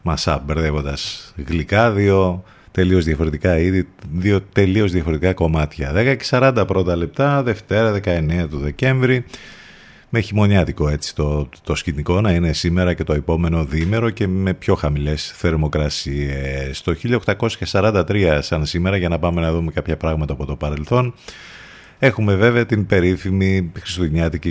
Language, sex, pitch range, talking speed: Greek, male, 80-115 Hz, 135 wpm